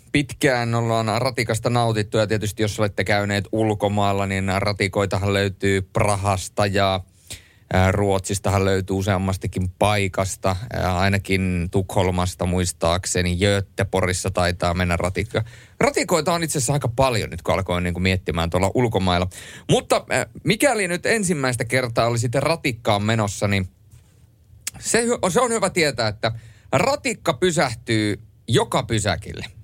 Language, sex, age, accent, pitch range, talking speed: Finnish, male, 30-49, native, 95-120 Hz, 115 wpm